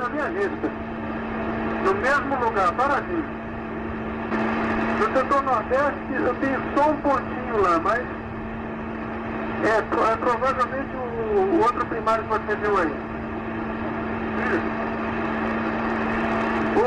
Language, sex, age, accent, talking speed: Portuguese, male, 60-79, Brazilian, 110 wpm